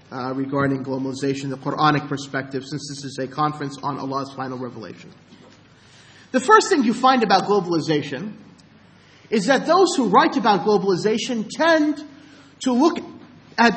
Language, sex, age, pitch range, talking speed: English, male, 40-59, 155-250 Hz, 145 wpm